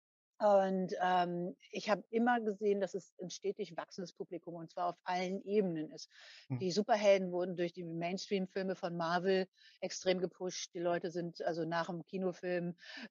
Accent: German